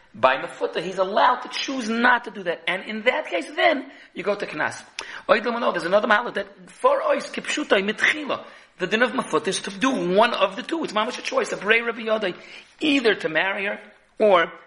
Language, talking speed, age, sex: English, 205 wpm, 40-59, male